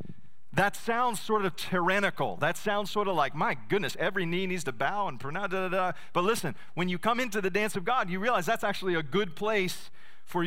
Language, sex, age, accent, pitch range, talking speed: English, male, 40-59, American, 135-195 Hz, 230 wpm